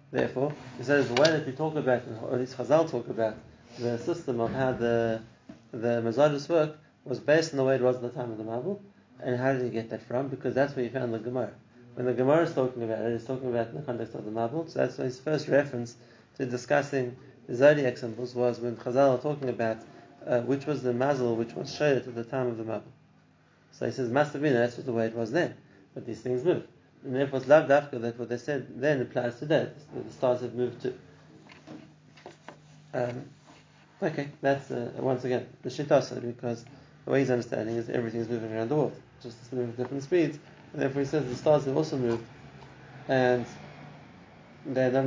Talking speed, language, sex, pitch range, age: 225 wpm, English, male, 120-140 Hz, 30-49